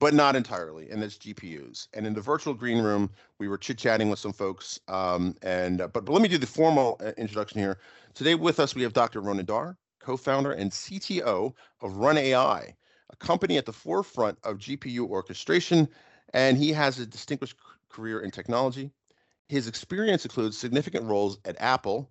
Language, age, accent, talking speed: English, 40-59, American, 180 wpm